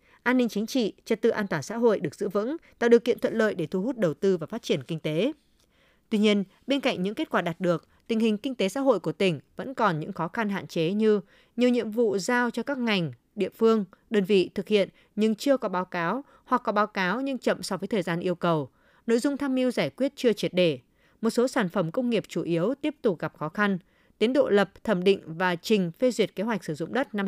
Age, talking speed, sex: 20-39, 265 wpm, female